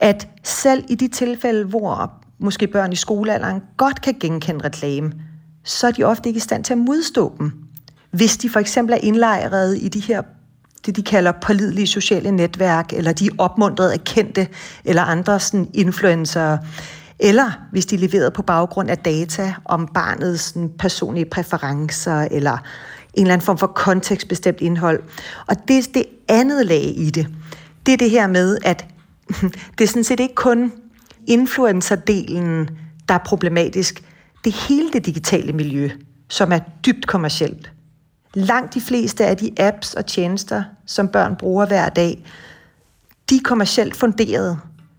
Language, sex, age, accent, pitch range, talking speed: Danish, female, 40-59, native, 165-220 Hz, 160 wpm